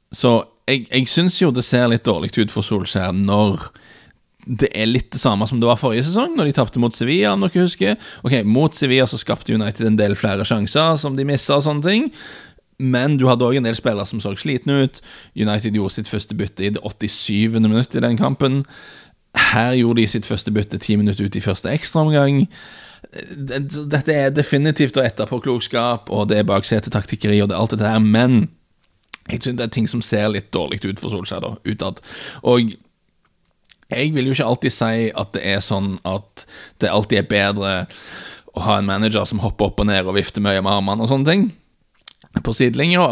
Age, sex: 30-49, male